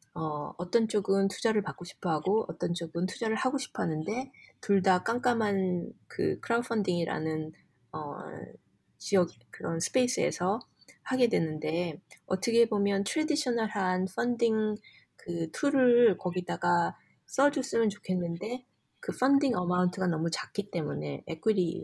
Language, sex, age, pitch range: Korean, female, 20-39, 165-215 Hz